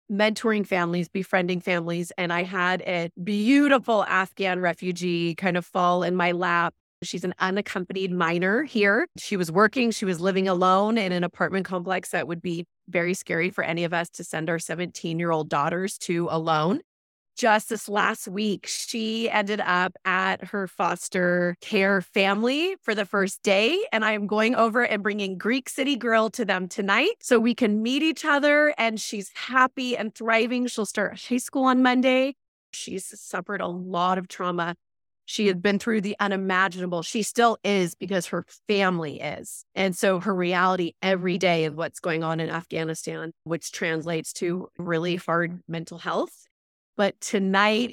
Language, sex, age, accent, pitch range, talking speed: English, female, 30-49, American, 175-225 Hz, 170 wpm